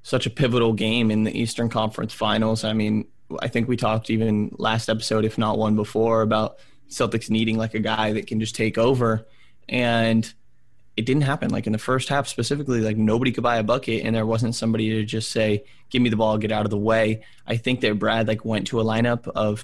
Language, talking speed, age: English, 230 wpm, 20-39